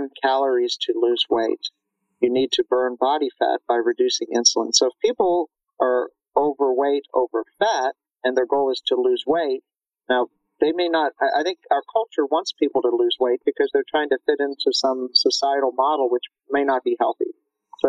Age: 50-69